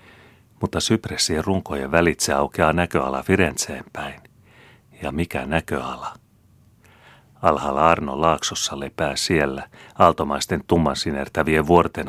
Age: 30-49